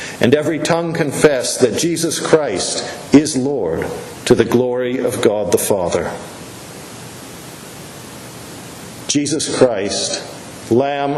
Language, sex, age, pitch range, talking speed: English, male, 50-69, 120-150 Hz, 100 wpm